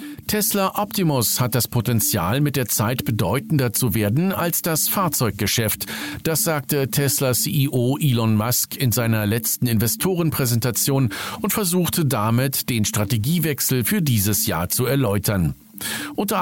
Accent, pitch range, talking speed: German, 110-170 Hz, 130 wpm